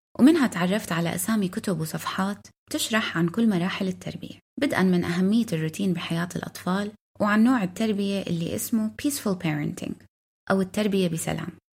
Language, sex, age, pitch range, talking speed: Arabic, female, 20-39, 175-225 Hz, 140 wpm